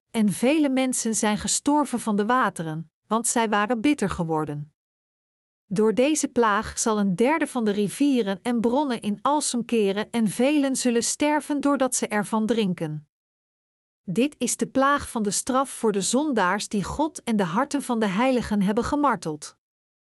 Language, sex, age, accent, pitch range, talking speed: Dutch, female, 50-69, Dutch, 205-260 Hz, 165 wpm